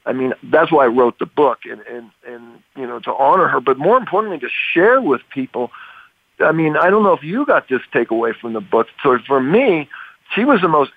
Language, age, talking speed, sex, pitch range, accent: English, 50-69, 235 wpm, male, 135-180 Hz, American